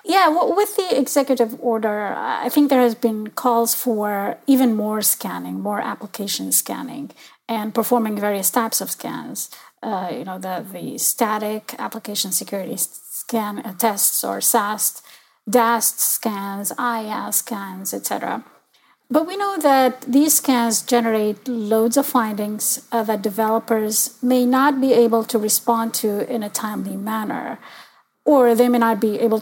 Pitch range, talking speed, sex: 215-255 Hz, 145 wpm, female